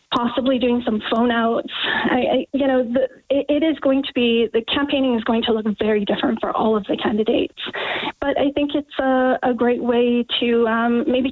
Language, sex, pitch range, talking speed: English, female, 220-260 Hz, 210 wpm